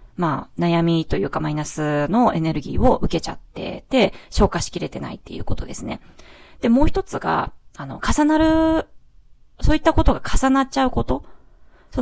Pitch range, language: 170-255 Hz, Japanese